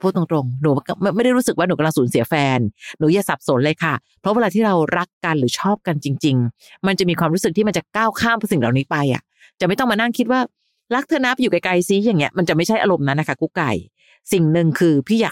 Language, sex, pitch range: Thai, female, 145-200 Hz